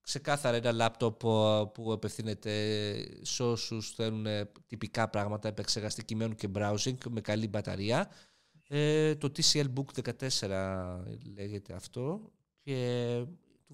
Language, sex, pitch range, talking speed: Greek, male, 110-150 Hz, 115 wpm